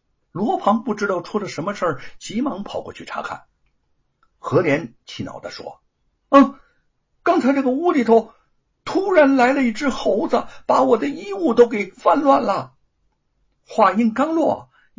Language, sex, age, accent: Chinese, male, 60-79, native